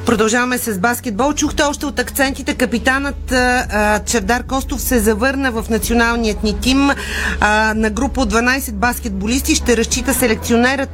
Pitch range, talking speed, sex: 210-255 Hz, 130 wpm, female